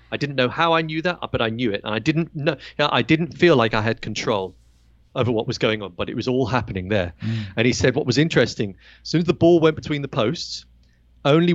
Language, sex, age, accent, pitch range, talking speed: English, male, 40-59, British, 105-135 Hz, 255 wpm